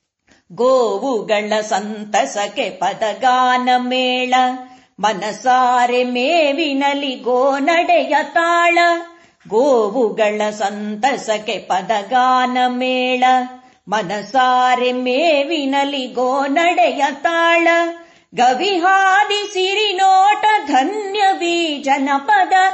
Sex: female